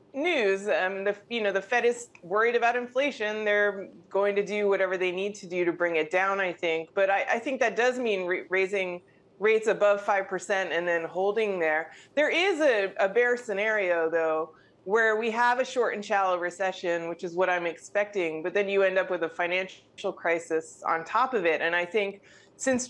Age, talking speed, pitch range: 30-49, 205 wpm, 180-225 Hz